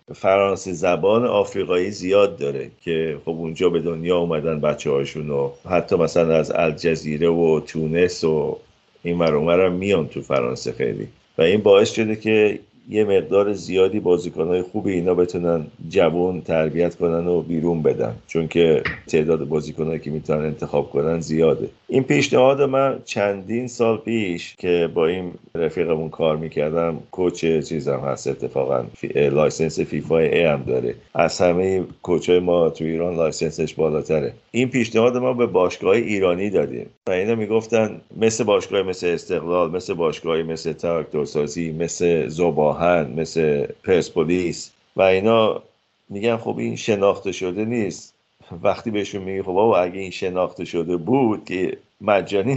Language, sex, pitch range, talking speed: Persian, male, 80-105 Hz, 145 wpm